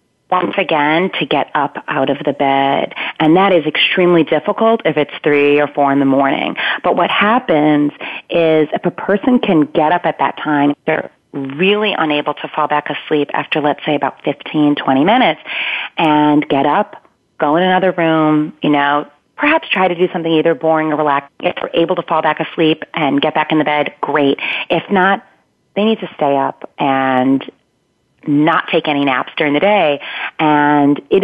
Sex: female